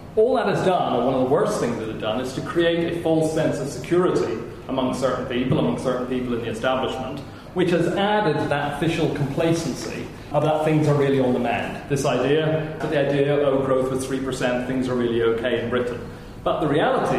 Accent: British